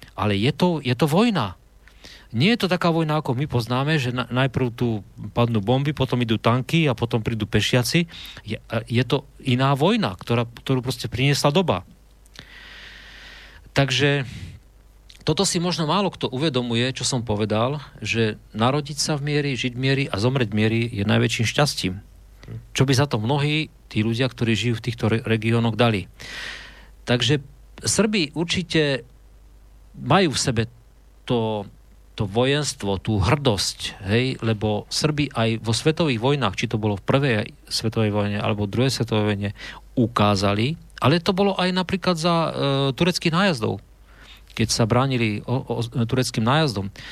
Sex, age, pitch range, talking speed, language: male, 40-59, 110-140 Hz, 155 wpm, Slovak